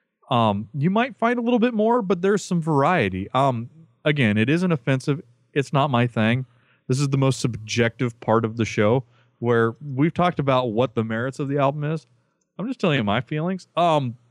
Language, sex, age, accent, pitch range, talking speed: English, male, 30-49, American, 120-160 Hz, 200 wpm